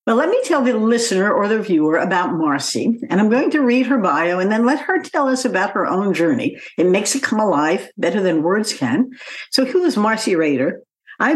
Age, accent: 60-79, American